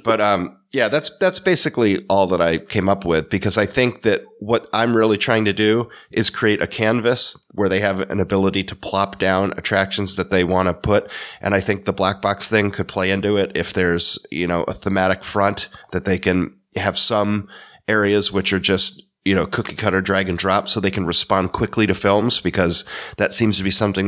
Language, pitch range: English, 95-105 Hz